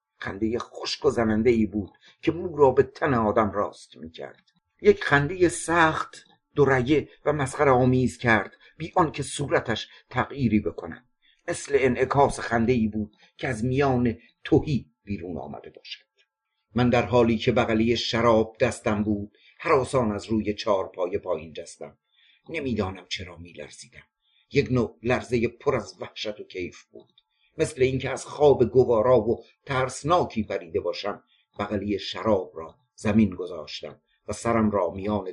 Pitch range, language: 105-145 Hz, Persian